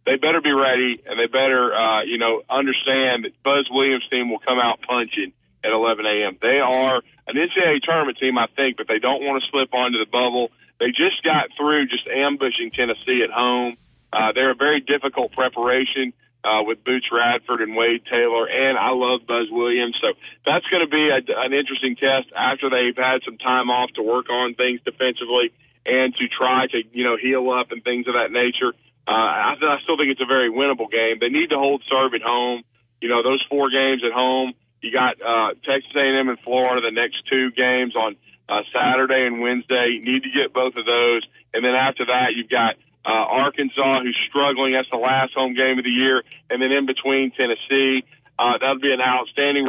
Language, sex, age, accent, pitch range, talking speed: English, male, 40-59, American, 120-135 Hz, 210 wpm